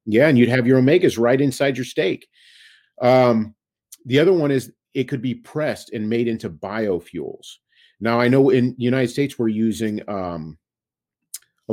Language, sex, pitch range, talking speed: English, male, 100-125 Hz, 175 wpm